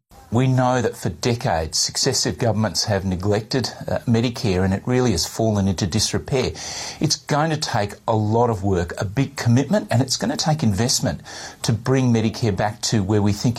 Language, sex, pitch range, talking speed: Arabic, male, 110-130 Hz, 190 wpm